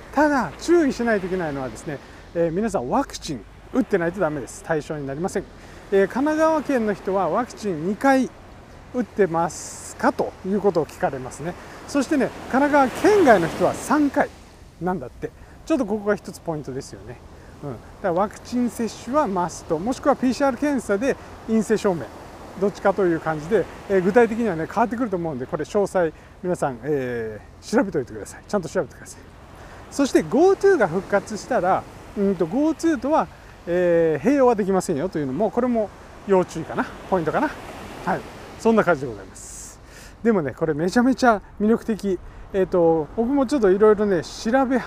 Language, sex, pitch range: Japanese, male, 170-260 Hz